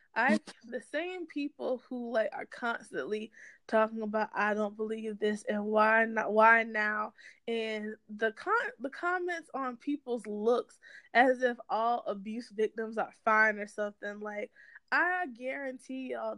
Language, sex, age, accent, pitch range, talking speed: English, female, 20-39, American, 220-280 Hz, 145 wpm